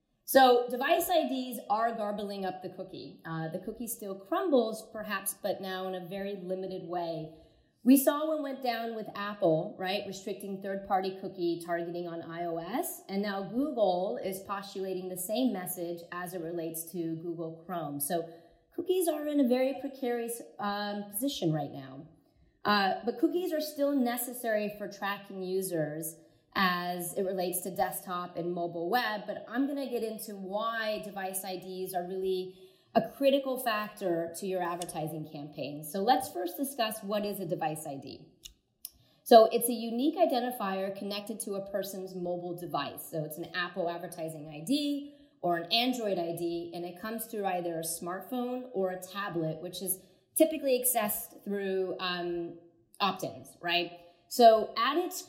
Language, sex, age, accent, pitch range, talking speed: English, female, 30-49, American, 175-230 Hz, 155 wpm